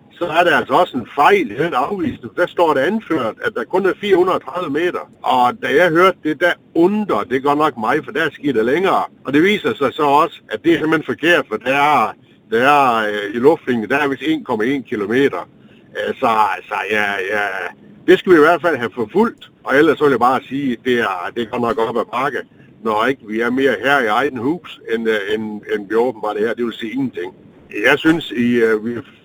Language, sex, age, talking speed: Danish, male, 60-79, 220 wpm